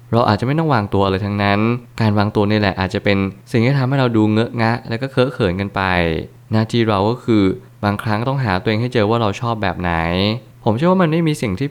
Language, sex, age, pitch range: Thai, male, 20-39, 100-125 Hz